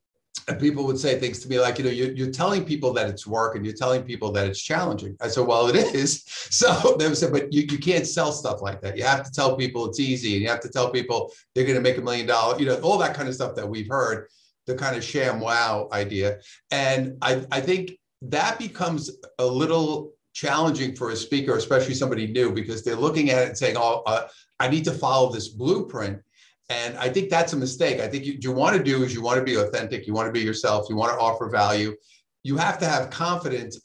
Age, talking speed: 50-69, 250 wpm